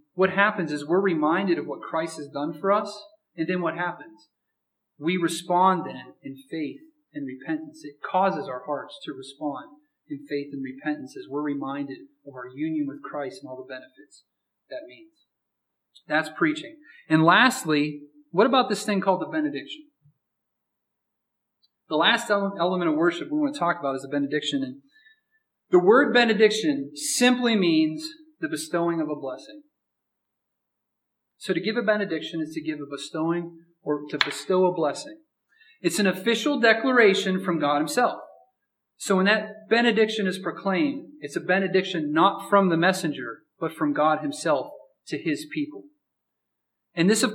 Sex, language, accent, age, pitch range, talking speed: male, English, American, 30-49, 150-235 Hz, 160 wpm